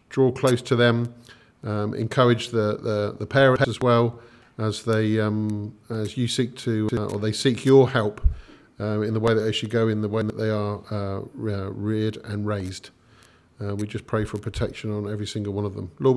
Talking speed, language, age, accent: 210 wpm, English, 40-59, British